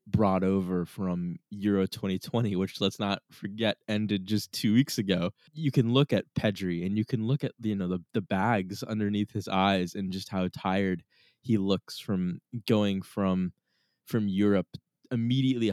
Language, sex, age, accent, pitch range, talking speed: English, male, 10-29, American, 90-110 Hz, 170 wpm